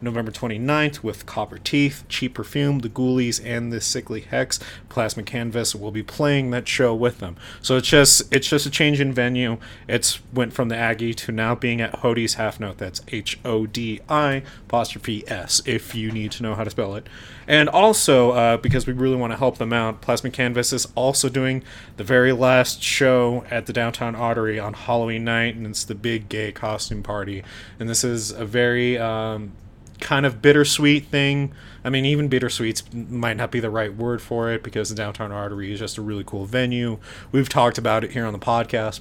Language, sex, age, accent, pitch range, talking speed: English, male, 30-49, American, 105-125 Hz, 200 wpm